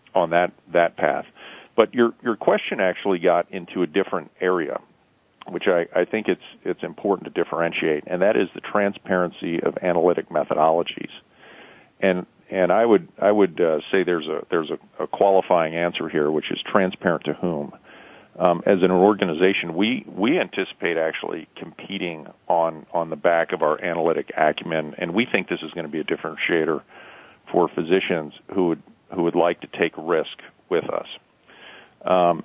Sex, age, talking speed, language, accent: male, 50-69, 170 wpm, English, American